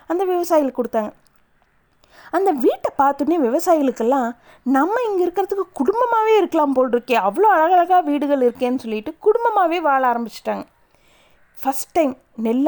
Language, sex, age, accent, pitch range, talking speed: Tamil, female, 30-49, native, 230-345 Hz, 120 wpm